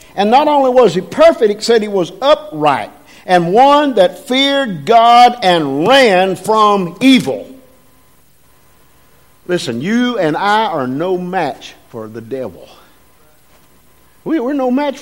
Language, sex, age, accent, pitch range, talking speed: English, male, 50-69, American, 195-250 Hz, 130 wpm